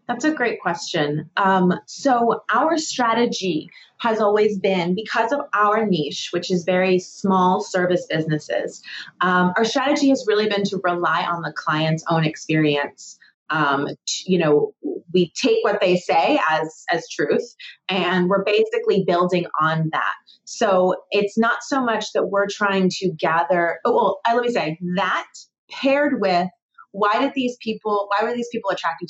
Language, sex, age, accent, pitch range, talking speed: English, female, 30-49, American, 175-230 Hz, 165 wpm